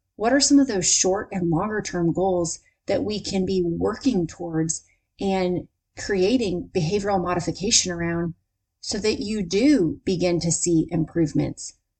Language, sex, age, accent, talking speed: English, female, 30-49, American, 145 wpm